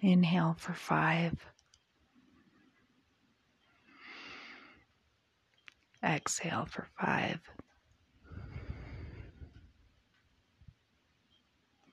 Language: English